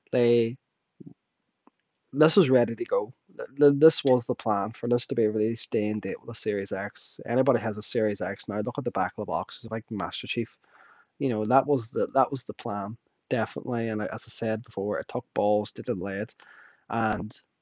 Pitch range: 110-125 Hz